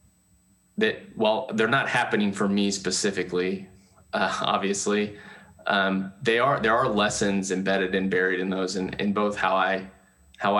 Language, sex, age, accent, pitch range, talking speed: English, male, 20-39, American, 95-100 Hz, 160 wpm